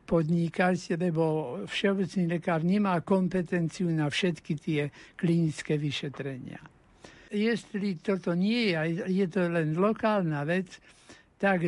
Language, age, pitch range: Slovak, 60-79, 165-195 Hz